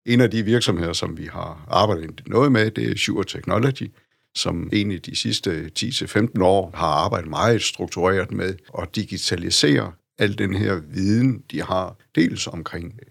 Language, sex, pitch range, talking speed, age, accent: Danish, male, 95-115 Hz, 160 wpm, 60-79, native